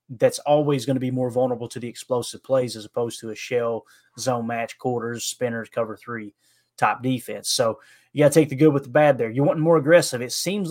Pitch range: 120-145 Hz